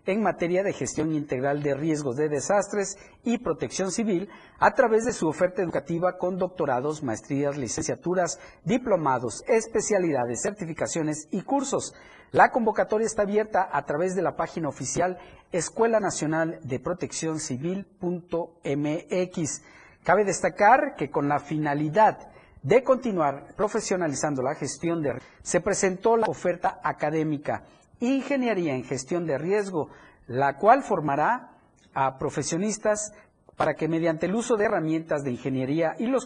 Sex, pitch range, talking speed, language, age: male, 150-205 Hz, 135 wpm, Spanish, 50-69